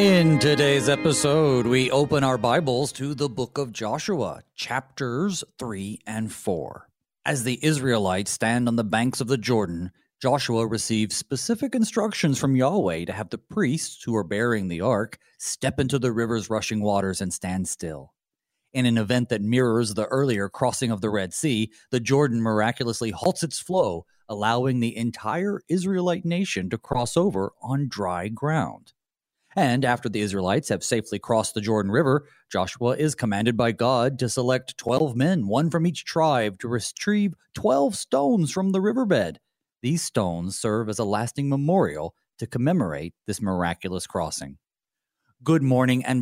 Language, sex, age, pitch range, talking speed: English, male, 40-59, 110-140 Hz, 160 wpm